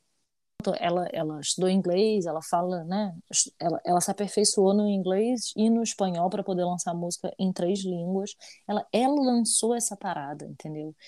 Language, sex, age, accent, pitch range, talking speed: Portuguese, female, 20-39, Brazilian, 175-205 Hz, 155 wpm